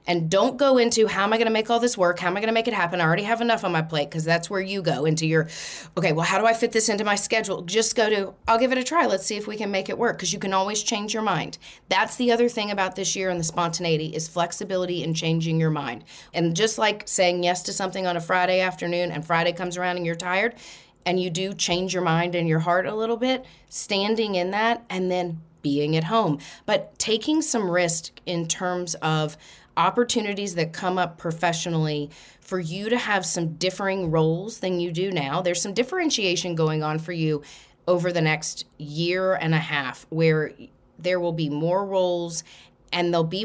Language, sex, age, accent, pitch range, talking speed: English, female, 30-49, American, 160-195 Hz, 230 wpm